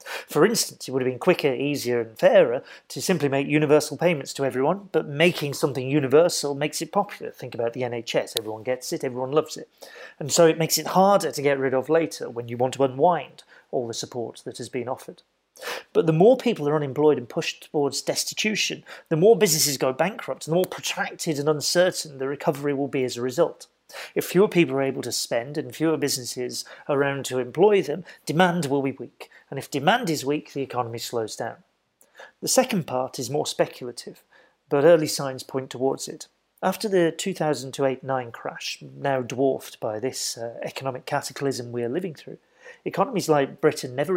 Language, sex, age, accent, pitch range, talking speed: English, male, 40-59, British, 130-165 Hz, 195 wpm